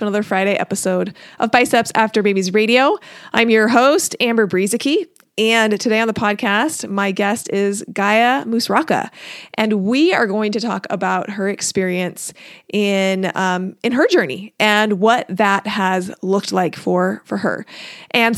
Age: 30-49